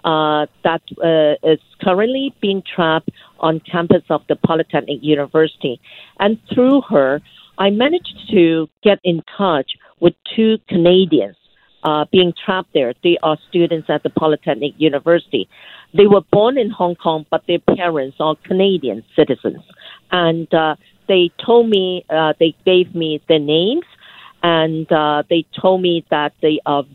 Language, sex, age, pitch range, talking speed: English, female, 50-69, 155-185 Hz, 150 wpm